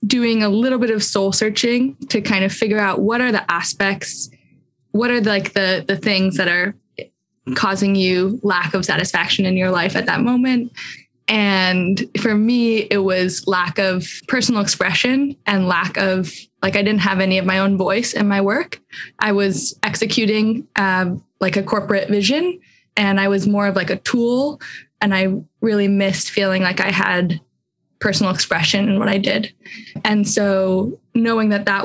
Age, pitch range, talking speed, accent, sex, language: 10-29, 190-215 Hz, 180 wpm, American, female, English